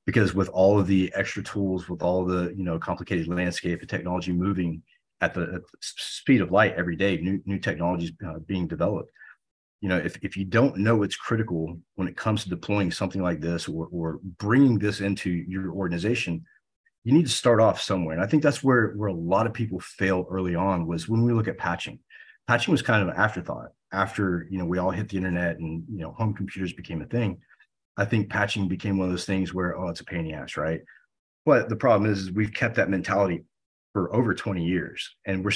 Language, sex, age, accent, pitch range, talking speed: English, male, 30-49, American, 90-110 Hz, 225 wpm